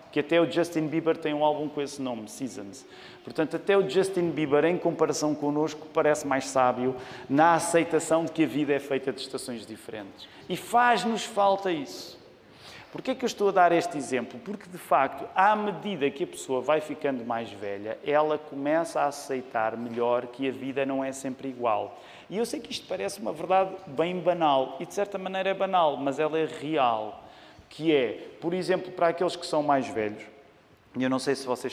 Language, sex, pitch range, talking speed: Portuguese, male, 130-165 Hz, 200 wpm